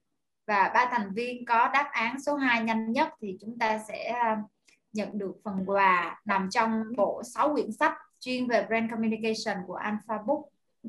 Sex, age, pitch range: female, 20-39, 210-255 Hz